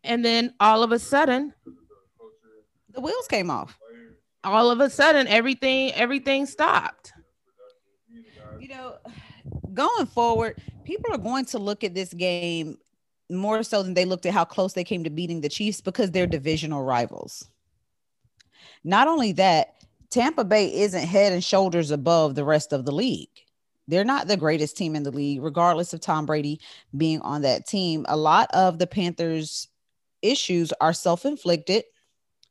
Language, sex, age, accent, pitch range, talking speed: English, female, 30-49, American, 165-230 Hz, 160 wpm